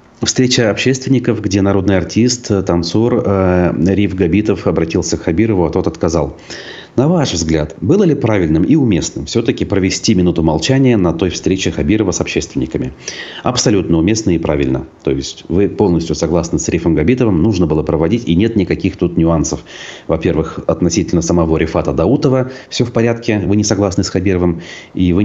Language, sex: Russian, male